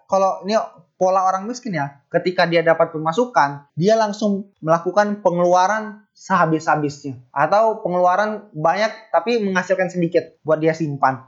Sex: male